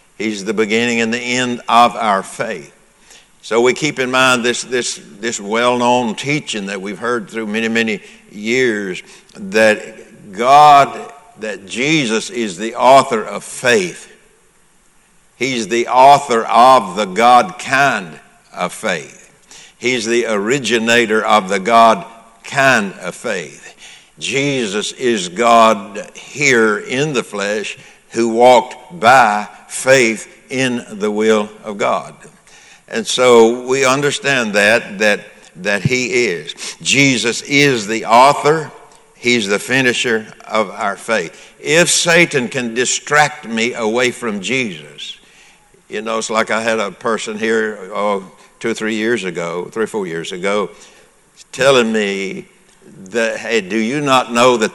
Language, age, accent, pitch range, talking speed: English, 60-79, American, 110-130 Hz, 135 wpm